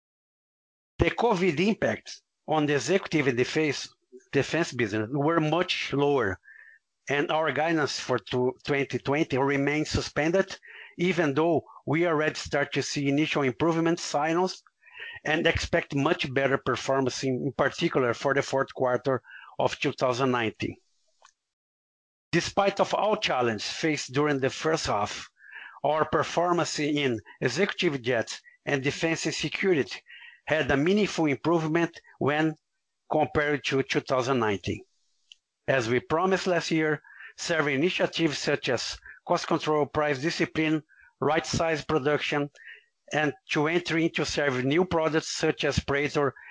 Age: 50-69